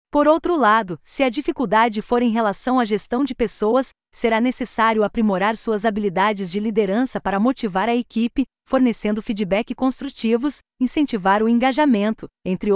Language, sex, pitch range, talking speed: Portuguese, female, 215-265 Hz, 145 wpm